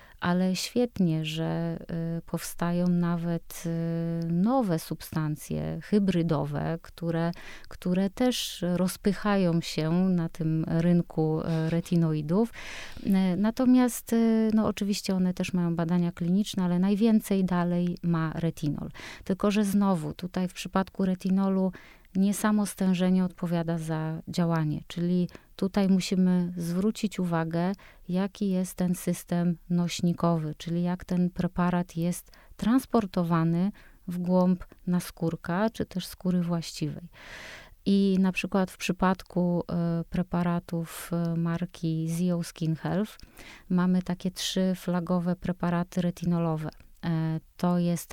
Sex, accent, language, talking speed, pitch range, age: female, native, Polish, 105 wpm, 170-195 Hz, 30-49